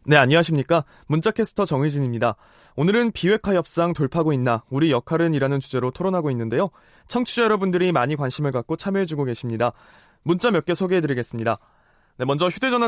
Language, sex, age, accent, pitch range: Korean, male, 20-39, native, 135-200 Hz